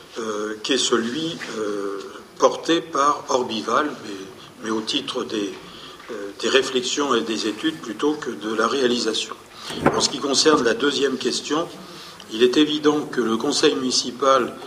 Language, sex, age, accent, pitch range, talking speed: French, male, 50-69, French, 120-155 Hz, 155 wpm